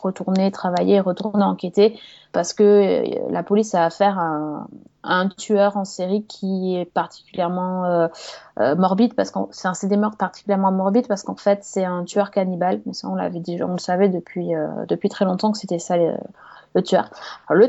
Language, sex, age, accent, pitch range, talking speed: French, female, 20-39, French, 185-215 Hz, 190 wpm